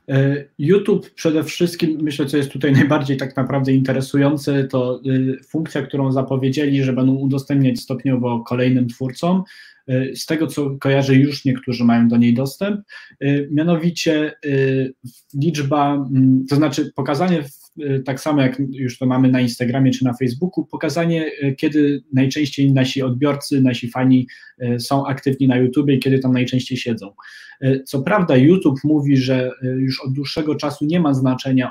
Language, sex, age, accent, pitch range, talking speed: Polish, male, 20-39, native, 125-145 Hz, 140 wpm